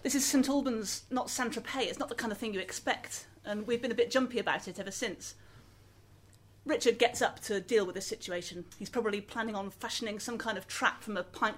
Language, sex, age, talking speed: English, female, 30-49, 230 wpm